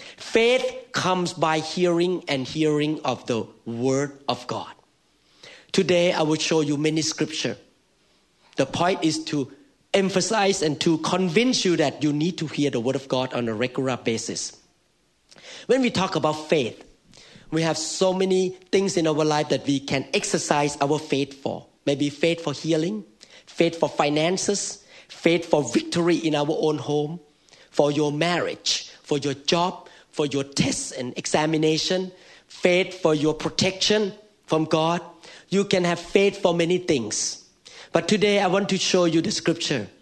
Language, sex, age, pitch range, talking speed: English, male, 40-59, 145-185 Hz, 160 wpm